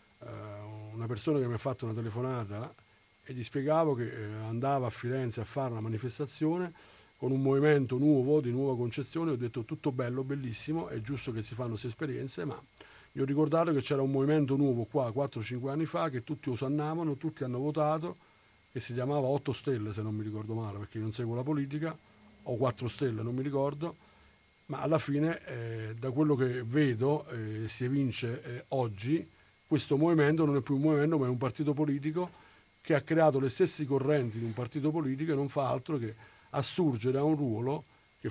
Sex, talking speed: male, 195 wpm